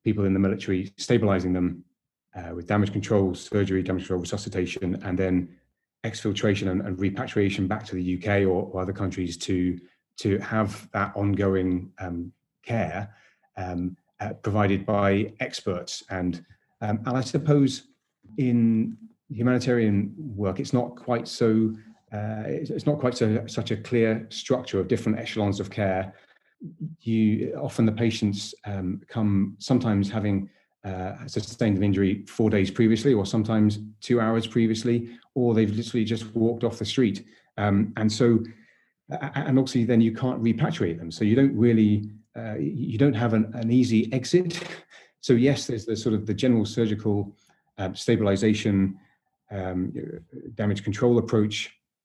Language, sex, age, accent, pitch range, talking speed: English, male, 30-49, British, 100-120 Hz, 155 wpm